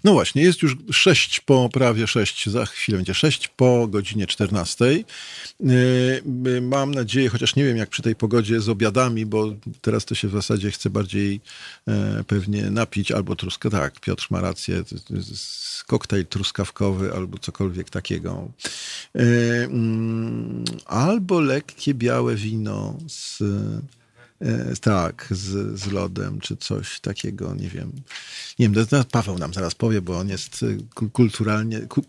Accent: native